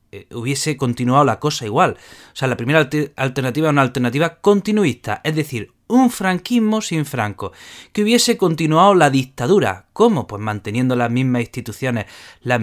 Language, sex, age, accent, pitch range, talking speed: Spanish, male, 20-39, Spanish, 130-210 Hz, 150 wpm